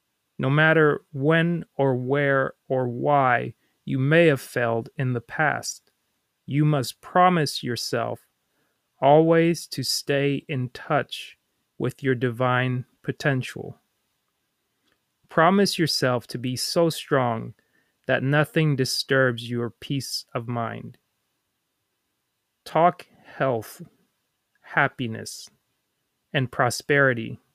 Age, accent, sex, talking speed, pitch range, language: 30-49, American, male, 100 wpm, 125-155 Hz, English